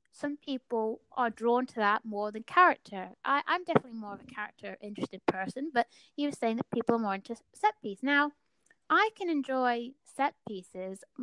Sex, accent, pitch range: female, British, 210-270 Hz